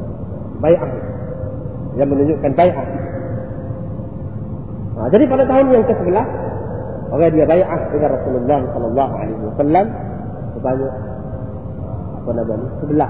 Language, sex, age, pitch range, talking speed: Malay, male, 40-59, 110-160 Hz, 100 wpm